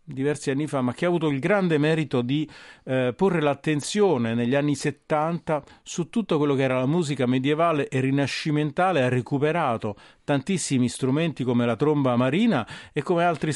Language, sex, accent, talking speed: Italian, male, native, 170 wpm